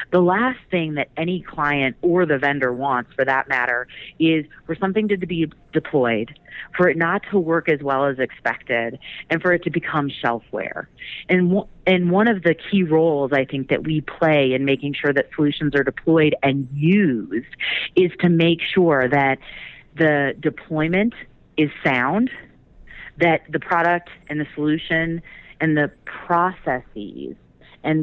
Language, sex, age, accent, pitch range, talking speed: English, female, 30-49, American, 140-175 Hz, 160 wpm